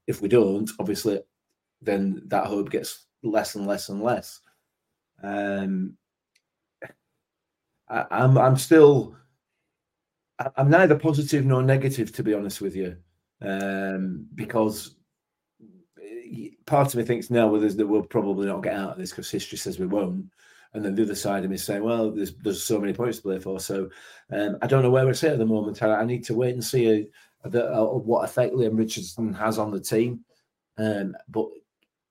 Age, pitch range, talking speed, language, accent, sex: 30-49, 100-120 Hz, 185 wpm, English, British, male